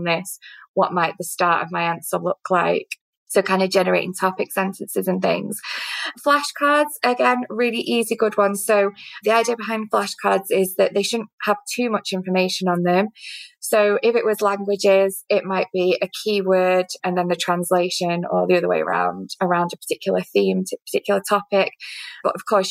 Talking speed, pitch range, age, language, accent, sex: 180 wpm, 180-210 Hz, 20-39, English, British, female